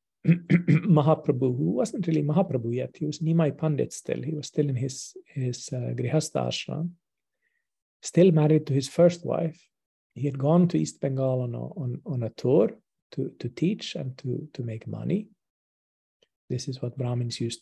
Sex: male